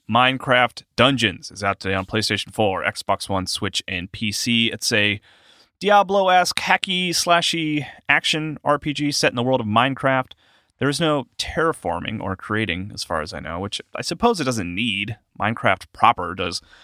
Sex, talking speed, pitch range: male, 165 wpm, 100-150 Hz